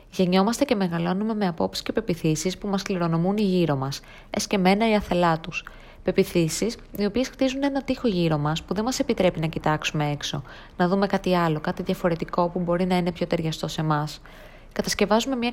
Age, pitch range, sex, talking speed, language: 20-39, 160-210 Hz, female, 180 wpm, Greek